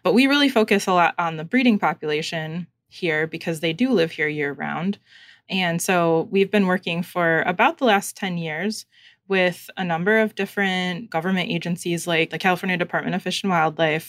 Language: English